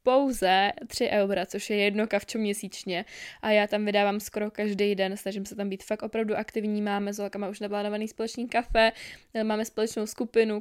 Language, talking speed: Czech, 180 wpm